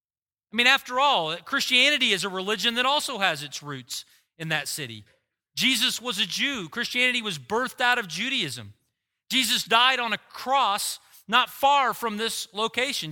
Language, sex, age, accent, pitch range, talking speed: English, male, 40-59, American, 155-235 Hz, 165 wpm